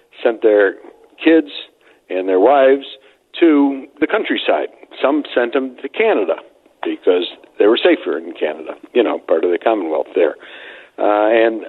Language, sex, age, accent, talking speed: English, male, 60-79, American, 150 wpm